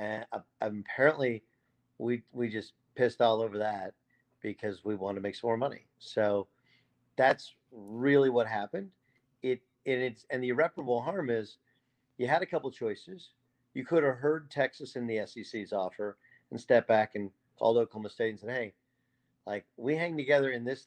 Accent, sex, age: American, male, 50-69